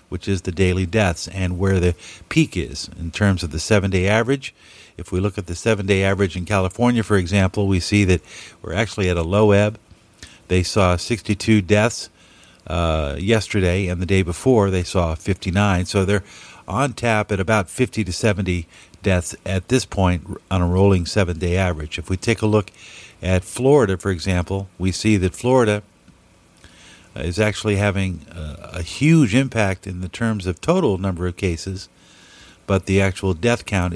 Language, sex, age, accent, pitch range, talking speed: English, male, 50-69, American, 90-105 Hz, 175 wpm